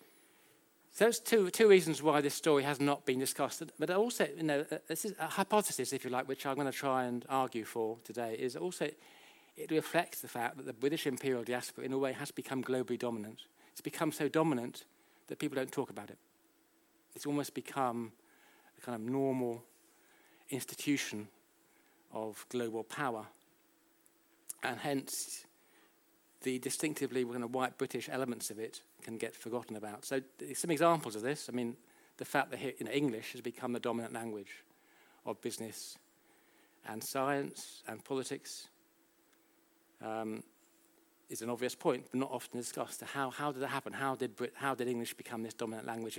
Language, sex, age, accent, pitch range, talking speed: German, male, 50-69, British, 120-145 Hz, 175 wpm